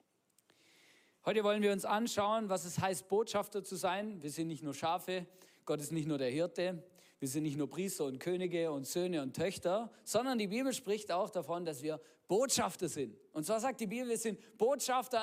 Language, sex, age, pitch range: German, male, 40-59, 175-235 Hz